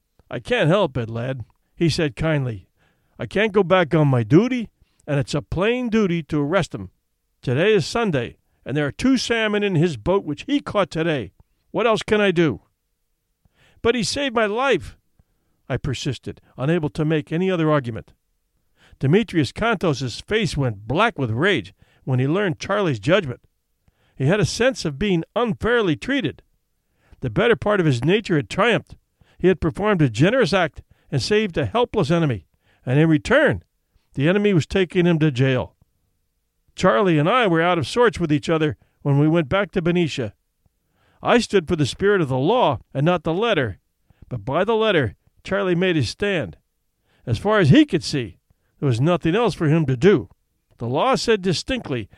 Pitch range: 130-200 Hz